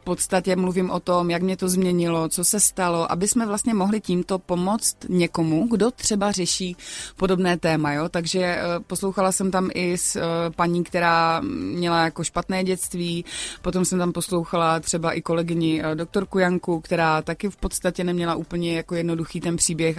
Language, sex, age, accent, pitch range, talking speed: Czech, female, 20-39, native, 170-210 Hz, 170 wpm